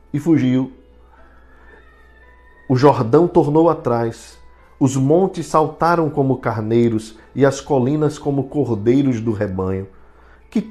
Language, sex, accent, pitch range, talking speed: Portuguese, male, Brazilian, 105-135 Hz, 105 wpm